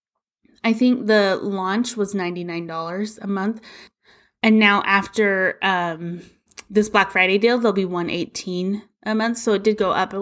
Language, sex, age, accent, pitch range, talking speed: English, female, 20-39, American, 185-230 Hz, 165 wpm